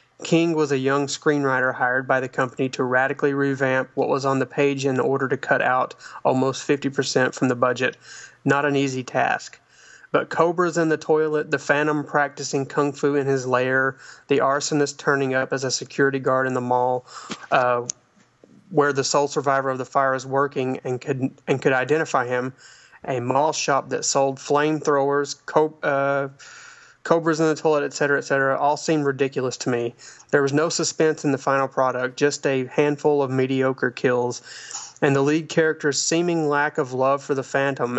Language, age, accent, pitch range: English, 30-49, American, 130-145 Hz